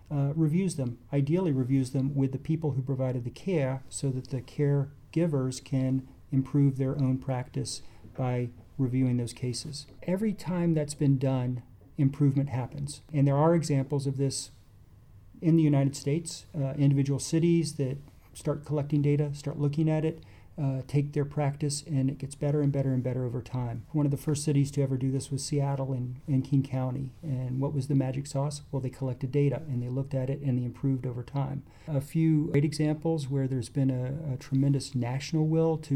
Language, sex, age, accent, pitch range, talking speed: English, male, 40-59, American, 130-145 Hz, 195 wpm